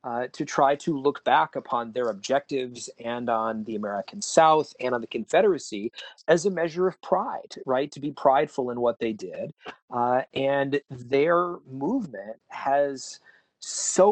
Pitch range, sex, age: 125-165 Hz, male, 40-59